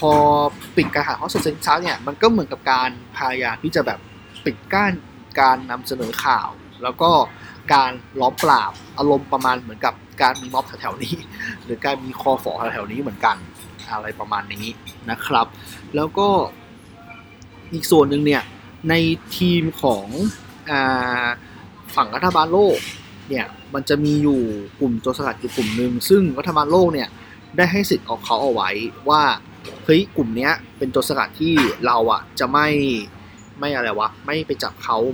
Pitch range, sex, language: 115-160 Hz, male, Thai